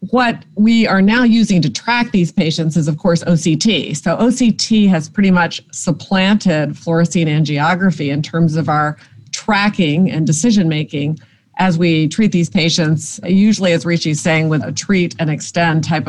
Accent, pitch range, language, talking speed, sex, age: American, 160-205 Hz, English, 170 wpm, female, 50-69